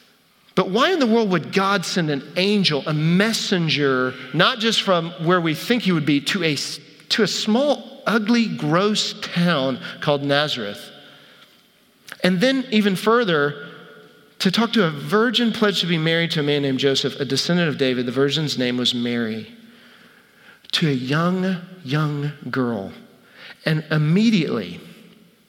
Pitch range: 145-205 Hz